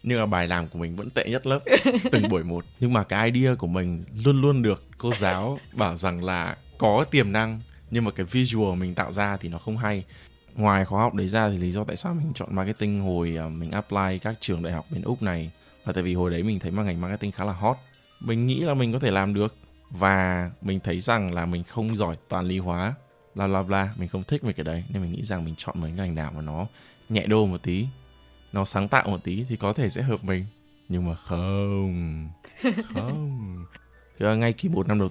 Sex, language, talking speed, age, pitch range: male, Vietnamese, 245 wpm, 20-39, 90-115 Hz